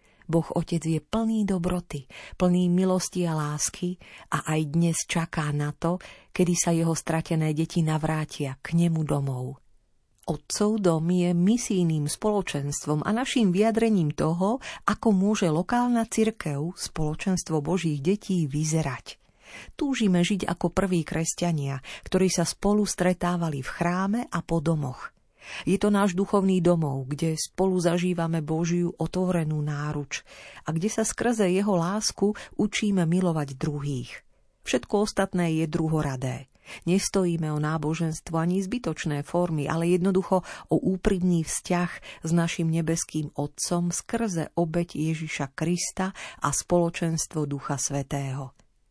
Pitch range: 155-185 Hz